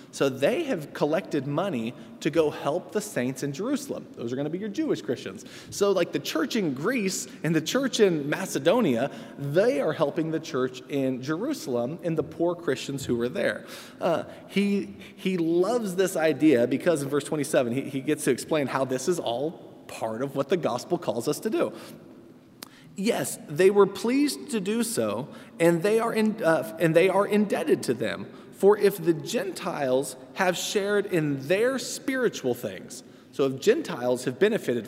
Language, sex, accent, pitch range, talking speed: English, male, American, 140-205 Hz, 175 wpm